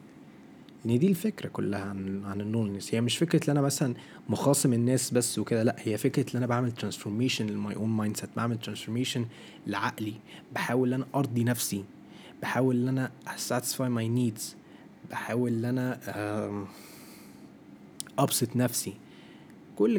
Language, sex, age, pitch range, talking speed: Arabic, male, 20-39, 105-125 Hz, 135 wpm